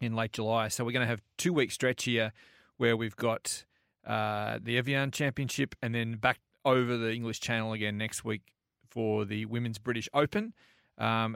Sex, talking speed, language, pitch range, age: male, 185 wpm, English, 110-130 Hz, 30-49